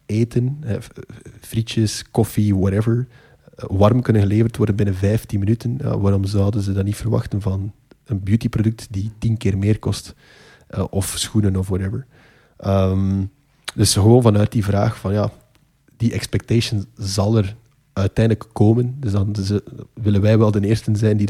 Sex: male